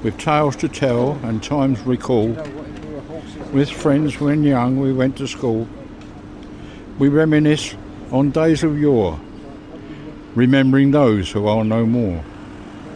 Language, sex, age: English, male, 60-79